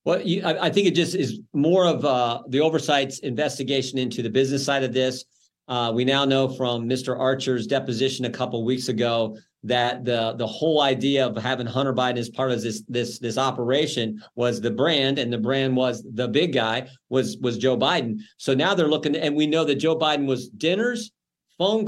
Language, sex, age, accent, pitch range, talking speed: English, male, 50-69, American, 130-160 Hz, 205 wpm